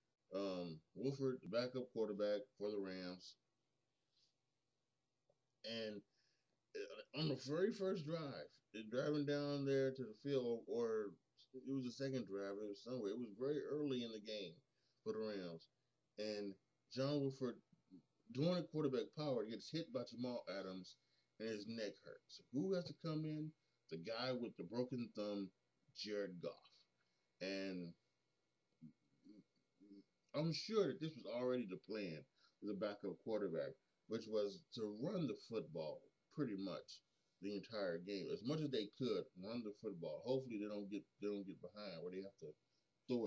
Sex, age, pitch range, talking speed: male, 20-39, 100-140 Hz, 155 wpm